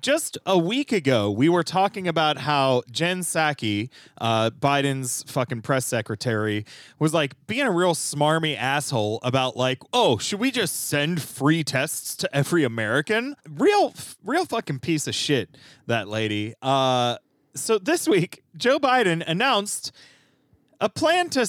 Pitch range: 135-220 Hz